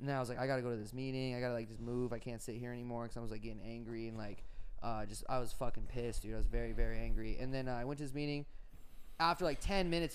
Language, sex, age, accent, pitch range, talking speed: English, male, 20-39, American, 115-145 Hz, 325 wpm